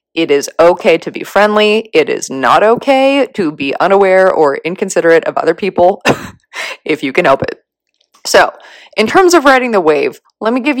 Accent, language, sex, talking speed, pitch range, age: American, English, female, 185 wpm, 165-225 Hz, 20-39